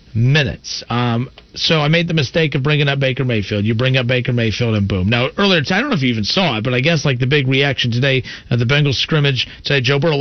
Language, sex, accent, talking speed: English, male, American, 265 wpm